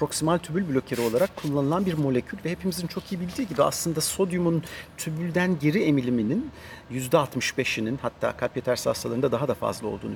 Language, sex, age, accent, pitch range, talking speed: Turkish, male, 50-69, native, 130-180 Hz, 160 wpm